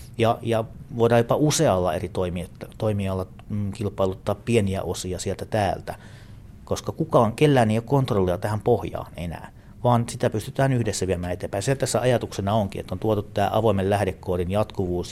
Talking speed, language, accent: 150 wpm, Finnish, native